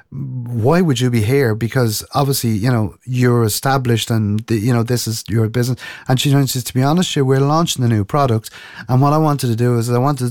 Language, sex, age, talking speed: English, male, 30-49, 220 wpm